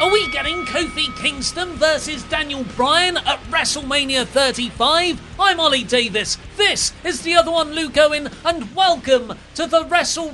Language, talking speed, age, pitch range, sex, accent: English, 150 wpm, 40-59, 155-255 Hz, male, British